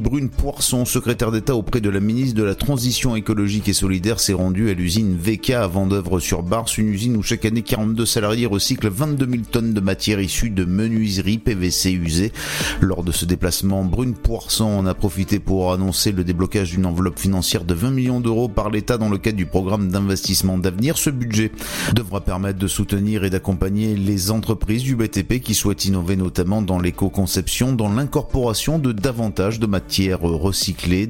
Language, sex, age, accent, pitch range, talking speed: French, male, 30-49, French, 95-115 Hz, 185 wpm